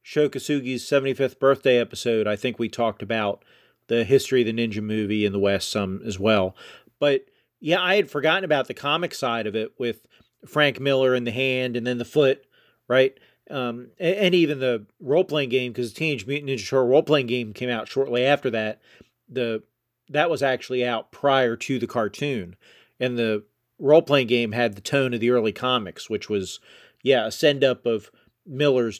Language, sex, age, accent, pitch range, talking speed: English, male, 40-59, American, 115-150 Hz, 185 wpm